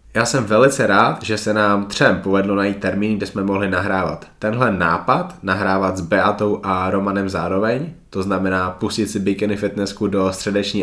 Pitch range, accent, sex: 90-105 Hz, native, male